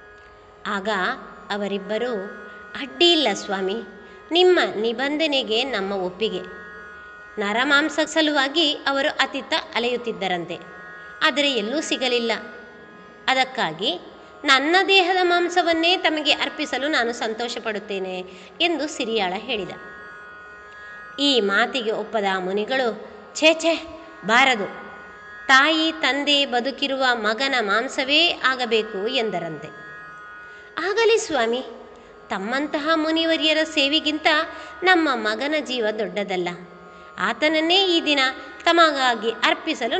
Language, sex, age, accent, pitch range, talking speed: Kannada, female, 20-39, native, 210-300 Hz, 85 wpm